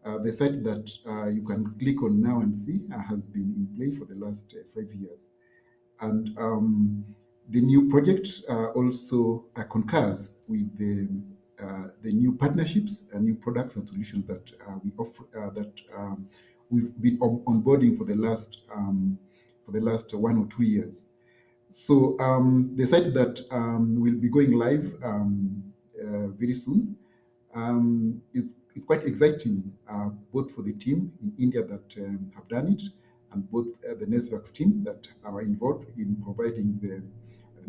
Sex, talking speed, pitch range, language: male, 175 wpm, 105-140 Hz, English